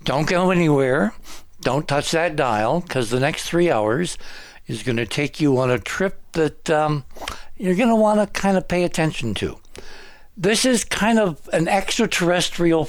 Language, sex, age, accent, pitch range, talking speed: English, male, 60-79, American, 120-165 Hz, 175 wpm